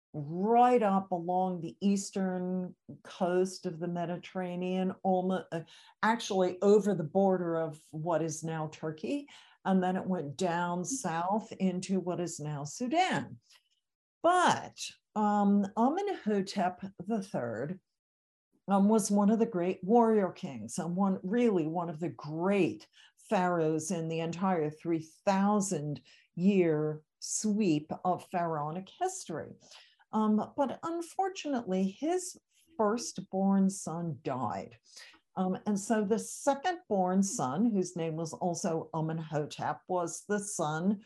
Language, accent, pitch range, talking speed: English, American, 170-210 Hz, 120 wpm